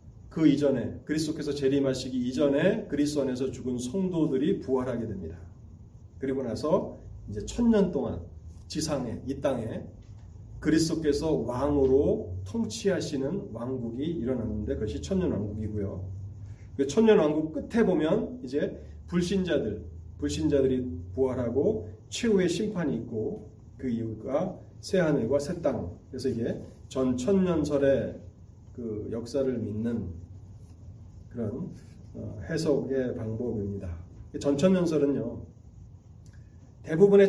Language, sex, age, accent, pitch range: Korean, male, 30-49, native, 105-145 Hz